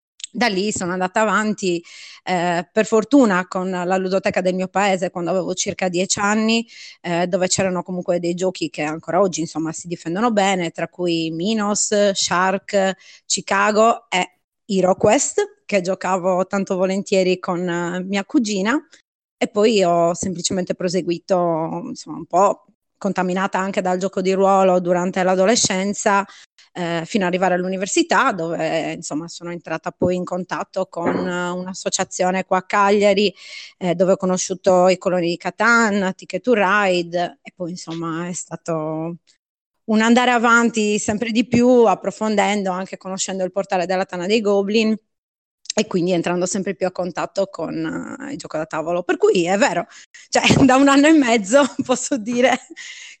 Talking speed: 155 wpm